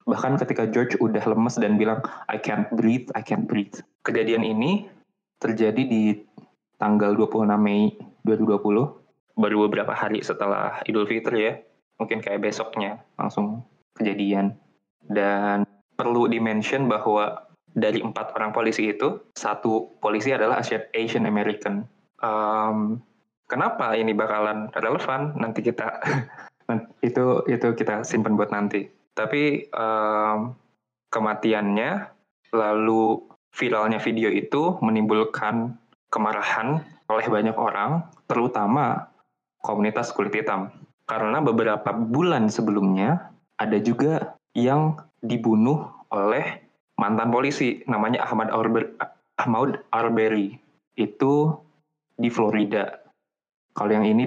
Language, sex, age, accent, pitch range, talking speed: Indonesian, male, 20-39, native, 105-115 Hz, 110 wpm